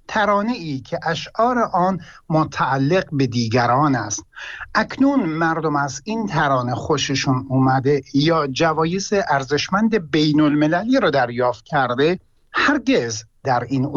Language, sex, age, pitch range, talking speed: Persian, male, 60-79, 125-175 Hz, 115 wpm